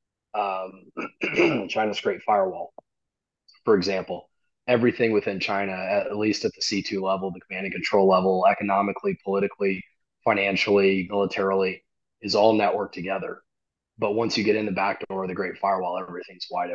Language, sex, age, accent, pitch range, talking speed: English, male, 20-39, American, 95-105 Hz, 150 wpm